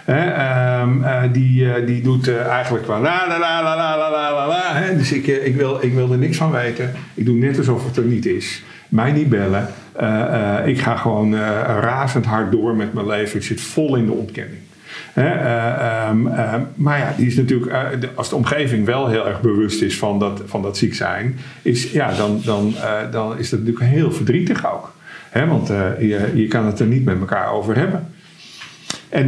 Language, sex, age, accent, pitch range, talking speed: Dutch, male, 50-69, Dutch, 110-130 Hz, 220 wpm